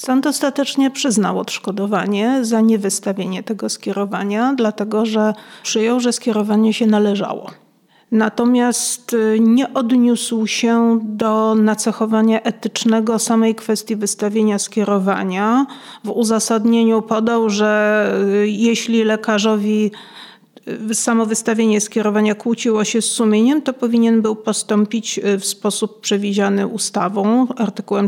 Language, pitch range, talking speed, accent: Polish, 215-245 Hz, 105 wpm, native